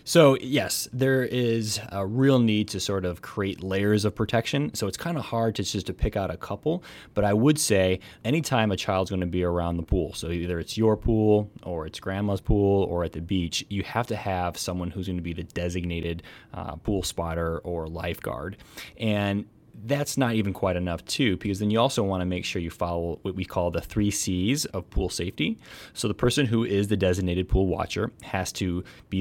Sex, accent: male, American